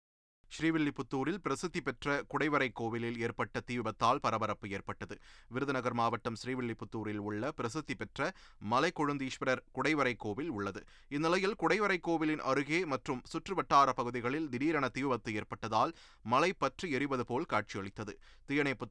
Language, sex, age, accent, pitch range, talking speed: Tamil, male, 30-49, native, 115-150 Hz, 115 wpm